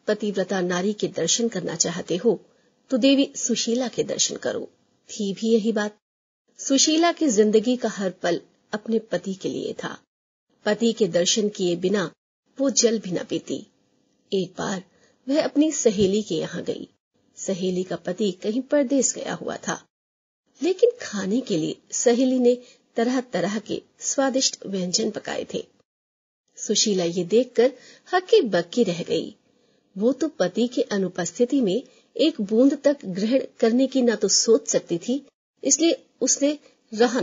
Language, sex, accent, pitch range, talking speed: Hindi, female, native, 200-270 Hz, 155 wpm